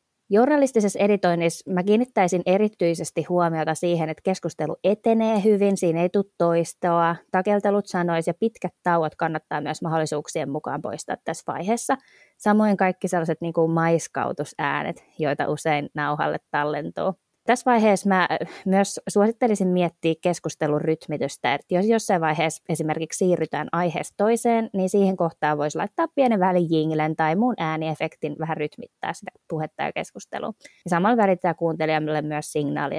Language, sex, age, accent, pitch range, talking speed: Finnish, female, 20-39, native, 160-205 Hz, 135 wpm